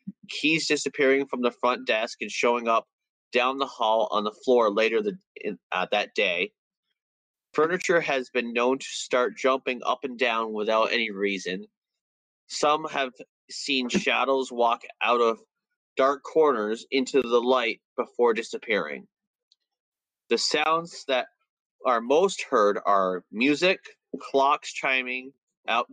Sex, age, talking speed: male, 30-49, 130 wpm